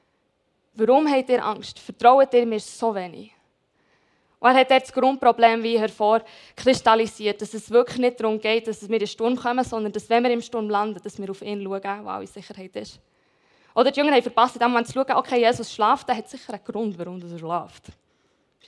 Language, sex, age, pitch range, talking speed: German, female, 20-39, 215-260 Hz, 210 wpm